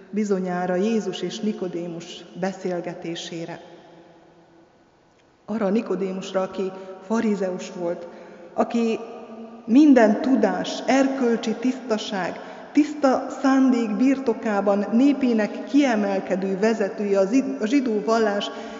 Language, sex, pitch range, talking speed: Hungarian, female, 190-235 Hz, 75 wpm